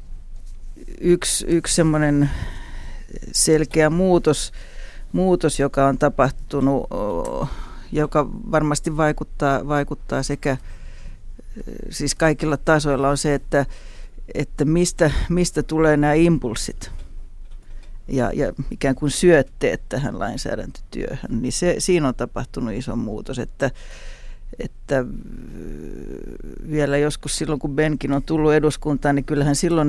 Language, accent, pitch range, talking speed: Finnish, native, 135-155 Hz, 105 wpm